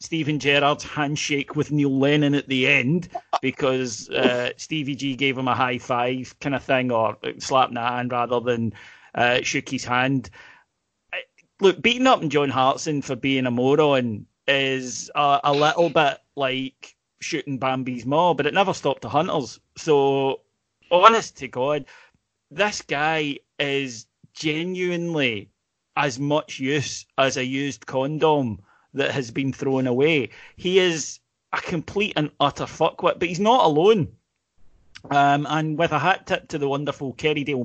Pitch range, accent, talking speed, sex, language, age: 125-150 Hz, British, 155 wpm, male, English, 30-49